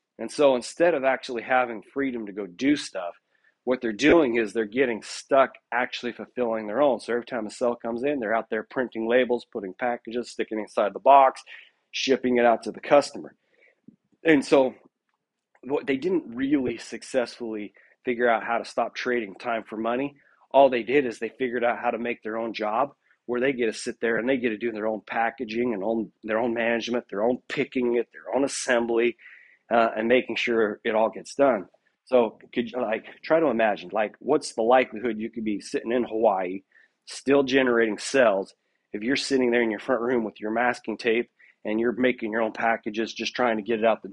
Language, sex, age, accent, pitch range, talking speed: English, male, 40-59, American, 115-130 Hz, 210 wpm